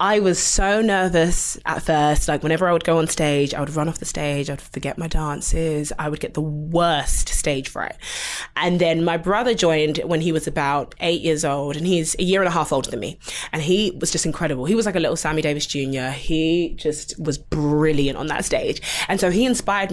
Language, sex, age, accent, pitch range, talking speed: English, female, 20-39, British, 150-185 Hz, 230 wpm